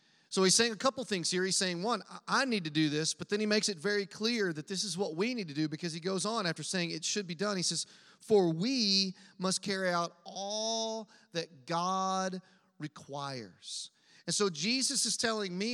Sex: male